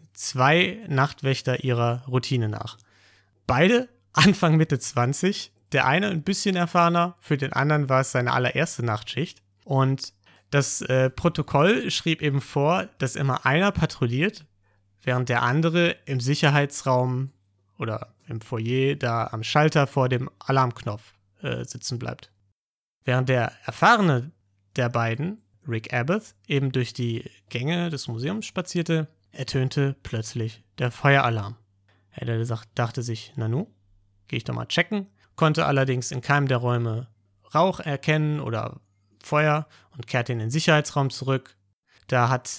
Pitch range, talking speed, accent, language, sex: 115-150 Hz, 135 wpm, German, German, male